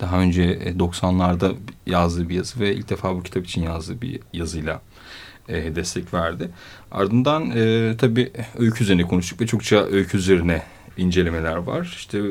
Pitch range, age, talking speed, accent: 85-105 Hz, 30-49, 140 wpm, native